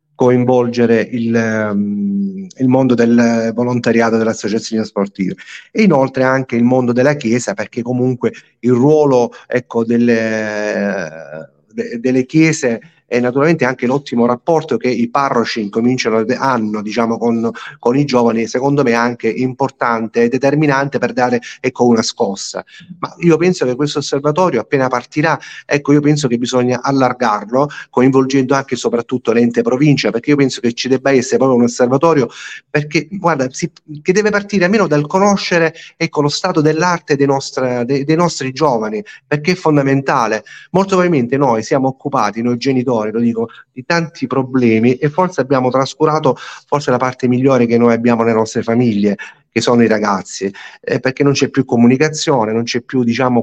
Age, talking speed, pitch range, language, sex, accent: 30-49, 155 wpm, 120-150 Hz, Italian, male, native